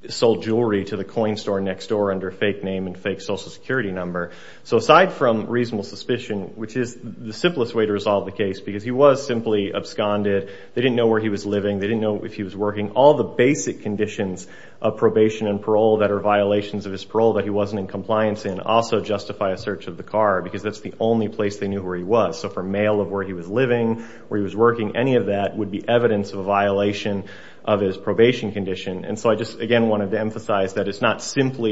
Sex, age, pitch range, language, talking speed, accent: male, 30-49, 100-115 Hz, English, 235 wpm, American